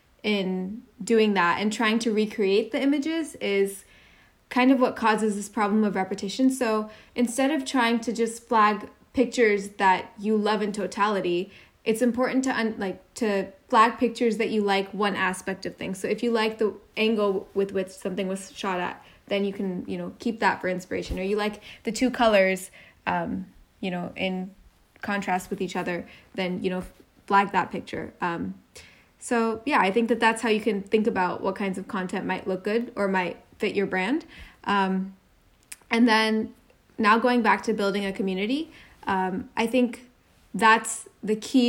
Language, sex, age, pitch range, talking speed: English, female, 10-29, 195-235 Hz, 185 wpm